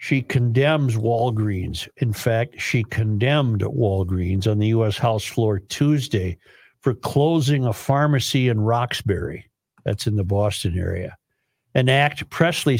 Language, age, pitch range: English, 60-79, 110-130 Hz